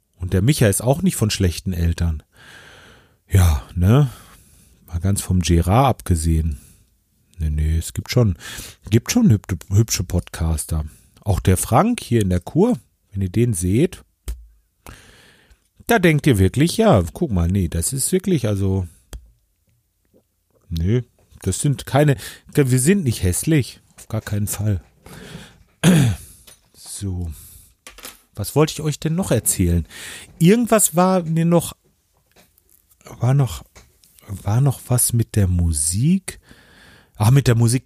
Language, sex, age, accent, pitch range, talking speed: German, male, 40-59, German, 90-130 Hz, 135 wpm